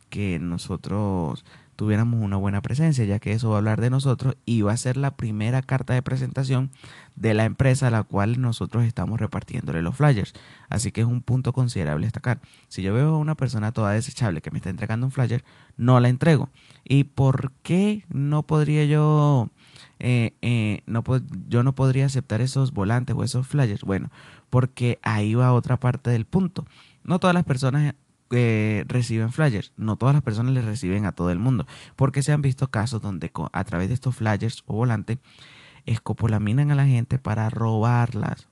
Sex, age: male, 30-49